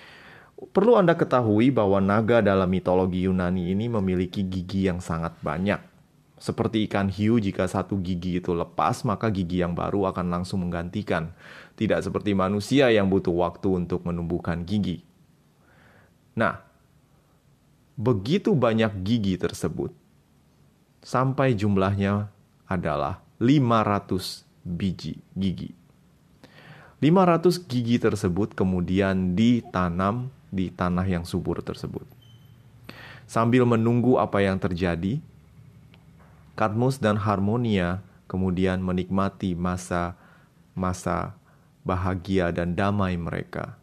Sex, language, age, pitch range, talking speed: male, Indonesian, 30-49, 90-120 Hz, 100 wpm